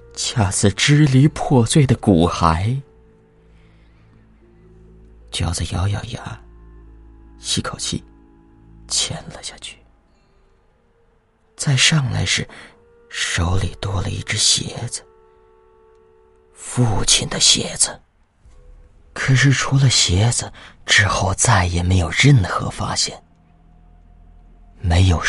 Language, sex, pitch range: Chinese, male, 85-120 Hz